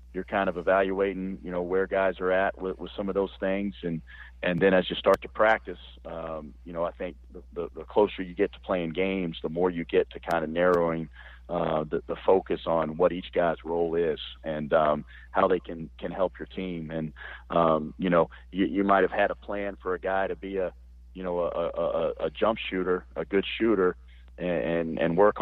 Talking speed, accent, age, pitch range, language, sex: 220 wpm, American, 40-59, 80-95 Hz, English, male